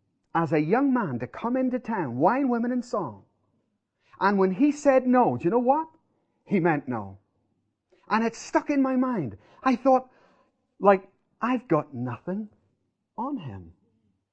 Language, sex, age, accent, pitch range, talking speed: English, male, 30-49, British, 165-260 Hz, 160 wpm